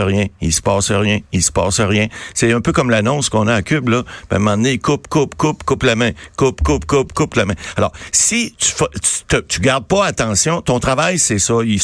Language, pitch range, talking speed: French, 100-140 Hz, 255 wpm